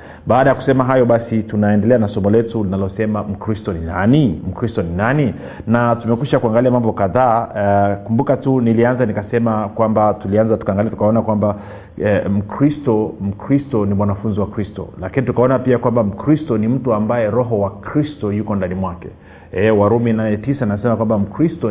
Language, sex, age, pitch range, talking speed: Swahili, male, 40-59, 100-125 Hz, 165 wpm